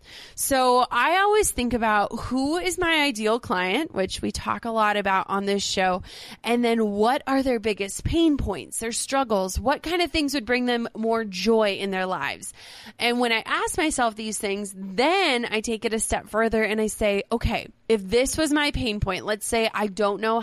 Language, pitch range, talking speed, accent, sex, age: English, 205-270 Hz, 205 wpm, American, female, 20-39